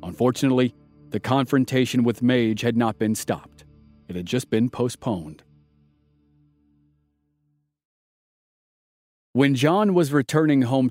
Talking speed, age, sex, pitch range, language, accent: 105 wpm, 40-59, male, 110-130 Hz, English, American